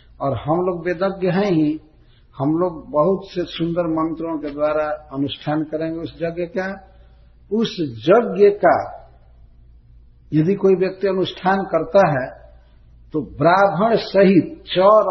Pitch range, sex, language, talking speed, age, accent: 120-185 Hz, male, Hindi, 125 wpm, 60-79, native